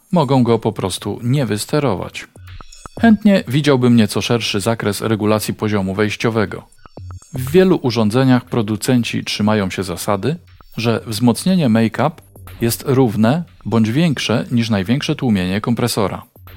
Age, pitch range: 40-59, 100-125 Hz